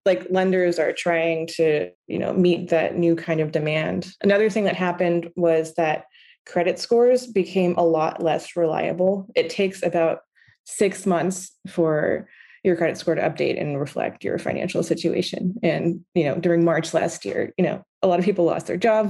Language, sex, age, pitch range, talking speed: English, female, 20-39, 165-195 Hz, 180 wpm